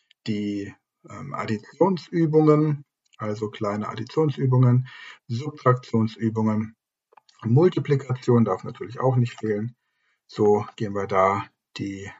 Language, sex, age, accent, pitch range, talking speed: German, male, 50-69, German, 105-155 Hz, 90 wpm